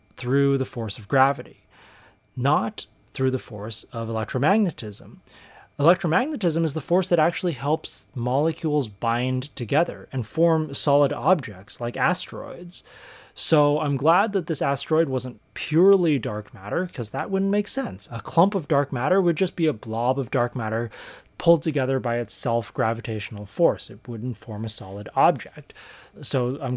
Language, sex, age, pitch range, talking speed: English, male, 20-39, 115-165 Hz, 155 wpm